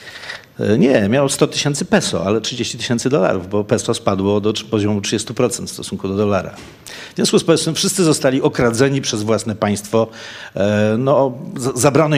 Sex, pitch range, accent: male, 100-120 Hz, native